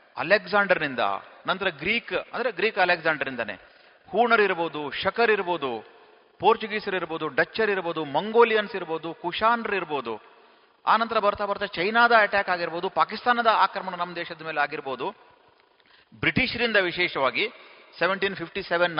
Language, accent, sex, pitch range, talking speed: Kannada, native, male, 170-220 Hz, 105 wpm